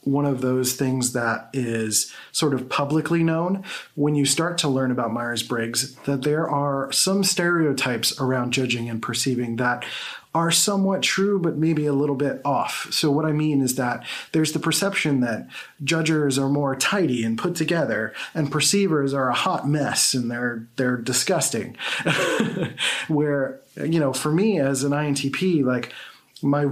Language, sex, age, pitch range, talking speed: English, male, 30-49, 130-160 Hz, 165 wpm